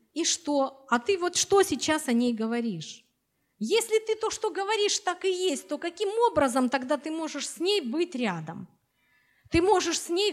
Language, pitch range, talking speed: Russian, 215-300 Hz, 185 wpm